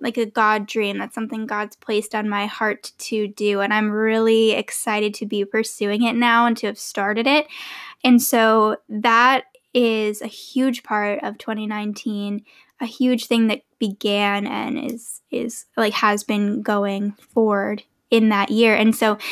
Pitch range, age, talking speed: 210-245 Hz, 10-29, 170 wpm